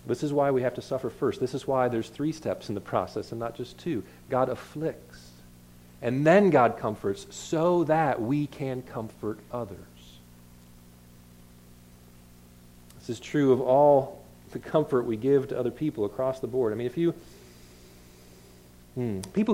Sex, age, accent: male, 40-59, American